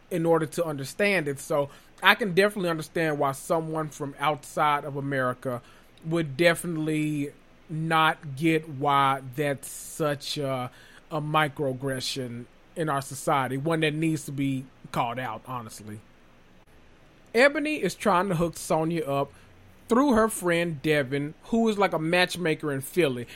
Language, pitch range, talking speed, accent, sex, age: English, 140-185 Hz, 140 wpm, American, male, 30-49